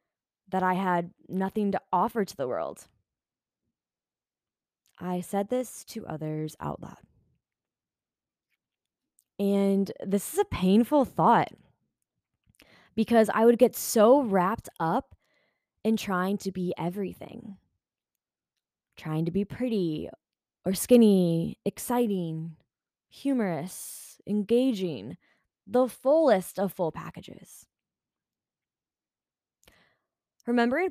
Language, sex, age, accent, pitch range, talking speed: English, female, 20-39, American, 175-215 Hz, 95 wpm